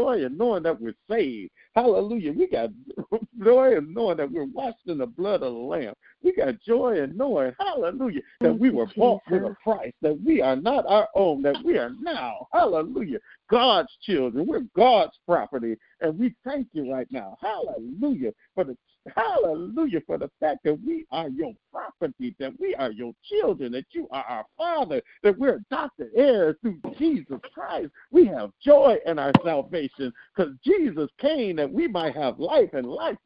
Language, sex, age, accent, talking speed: English, male, 50-69, American, 180 wpm